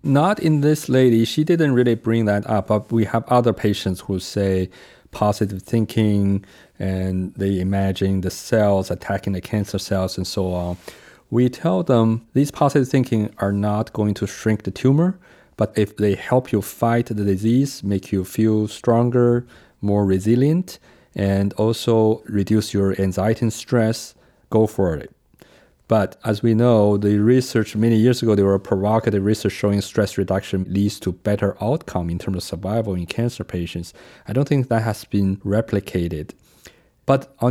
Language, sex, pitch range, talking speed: English, male, 100-120 Hz, 165 wpm